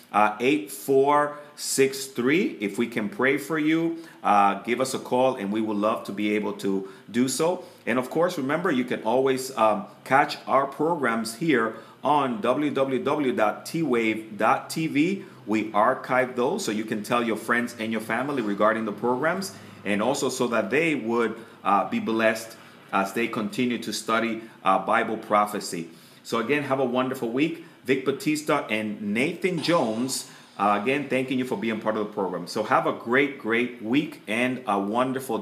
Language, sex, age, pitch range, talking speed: English, male, 30-49, 105-130 Hz, 175 wpm